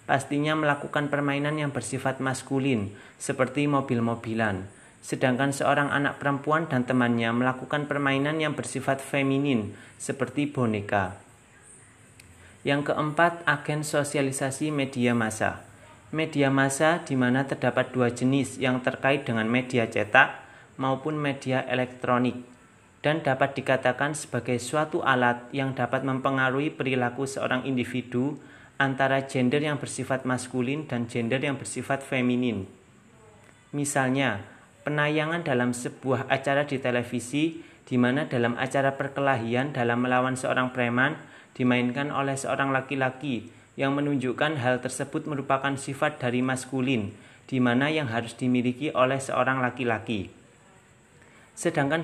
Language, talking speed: Malay, 115 wpm